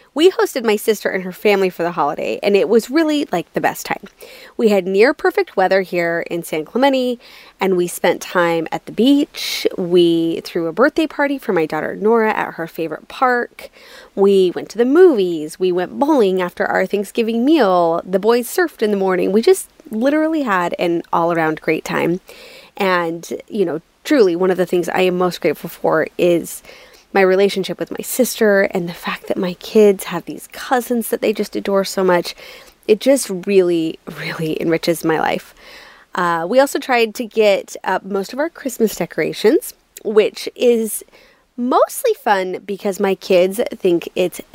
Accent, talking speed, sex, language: American, 180 wpm, female, English